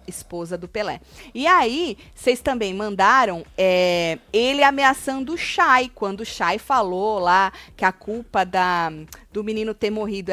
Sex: female